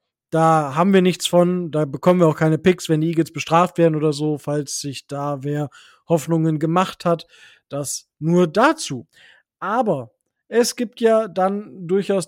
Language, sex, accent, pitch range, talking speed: German, male, German, 160-205 Hz, 165 wpm